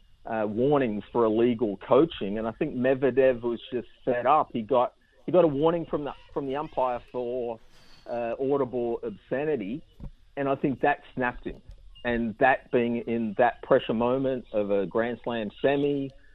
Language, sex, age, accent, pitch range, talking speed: English, male, 50-69, Australian, 115-145 Hz, 170 wpm